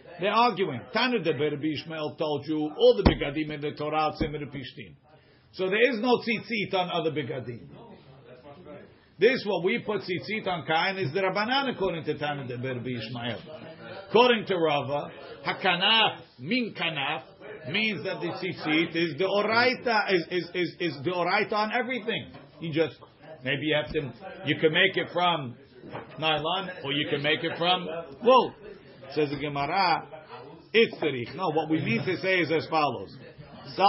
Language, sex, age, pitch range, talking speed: English, male, 50-69, 150-205 Hz, 160 wpm